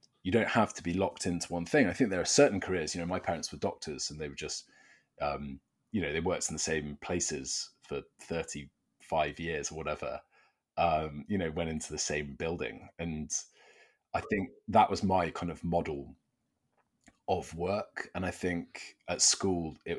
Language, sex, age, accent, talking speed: English, male, 30-49, British, 190 wpm